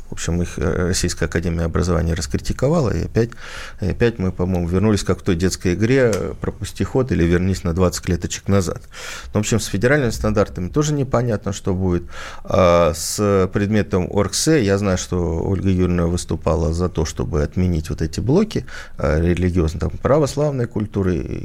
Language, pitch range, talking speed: Russian, 85-110 Hz, 160 wpm